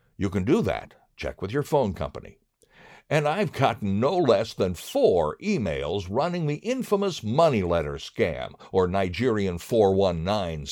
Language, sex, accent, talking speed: English, male, American, 145 wpm